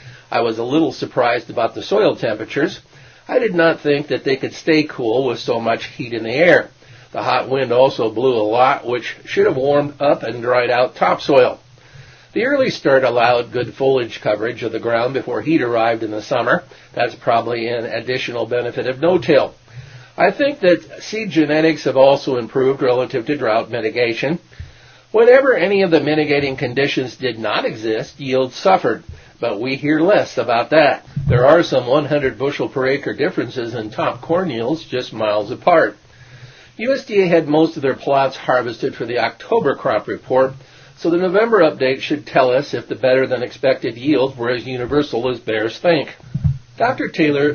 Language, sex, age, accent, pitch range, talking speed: English, male, 50-69, American, 120-155 Hz, 175 wpm